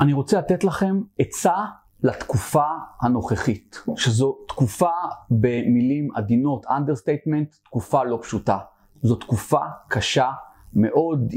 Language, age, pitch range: Hebrew, 40-59, 120-160 Hz